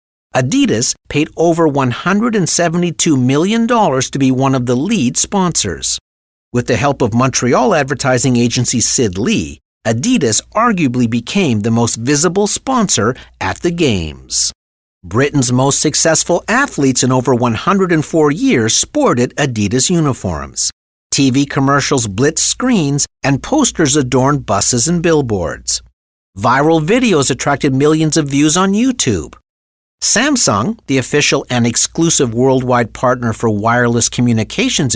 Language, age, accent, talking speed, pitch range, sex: English, 50-69, American, 120 wpm, 110-160 Hz, male